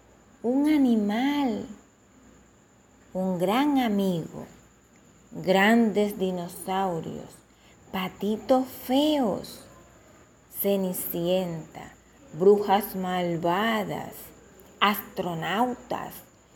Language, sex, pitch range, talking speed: Spanish, female, 185-255 Hz, 45 wpm